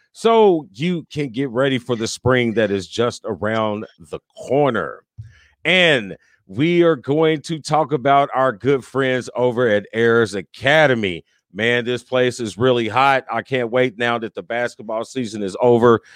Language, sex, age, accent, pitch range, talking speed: English, male, 40-59, American, 115-150 Hz, 165 wpm